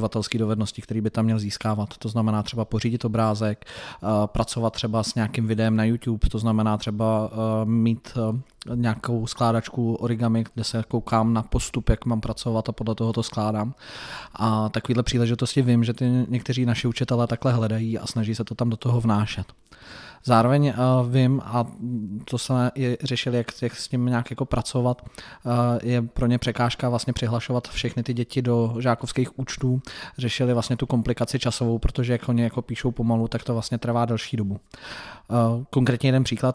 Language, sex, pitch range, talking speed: Czech, male, 115-125 Hz, 170 wpm